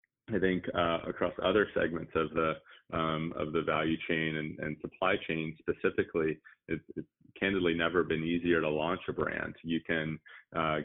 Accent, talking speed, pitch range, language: American, 170 wpm, 80-85 Hz, English